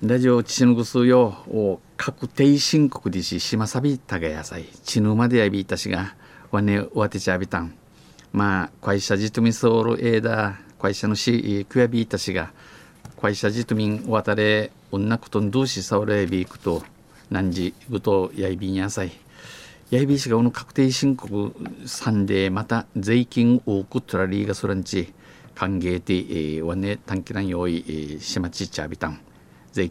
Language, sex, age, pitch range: Japanese, male, 50-69, 95-120 Hz